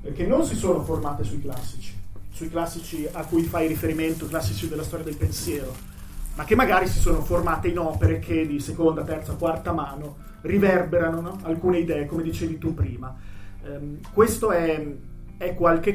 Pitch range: 140-175 Hz